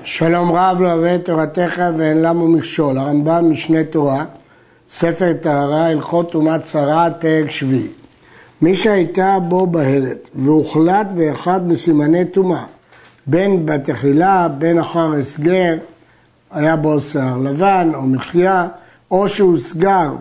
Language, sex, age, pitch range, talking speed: Hebrew, male, 60-79, 150-185 Hz, 115 wpm